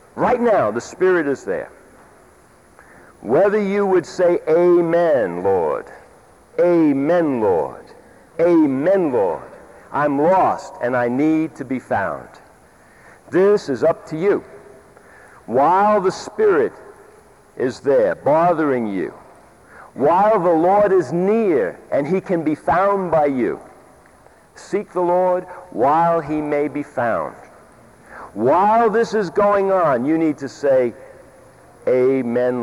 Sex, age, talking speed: male, 60-79, 120 wpm